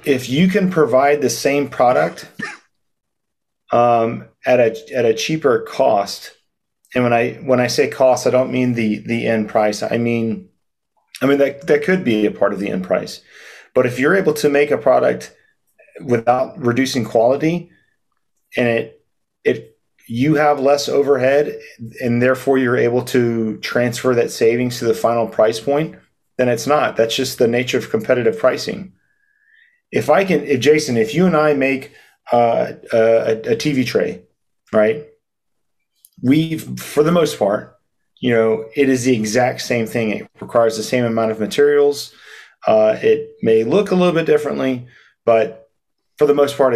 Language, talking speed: English, 170 wpm